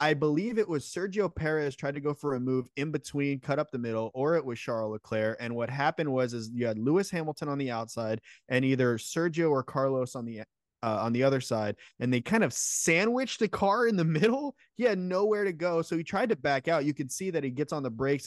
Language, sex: English, male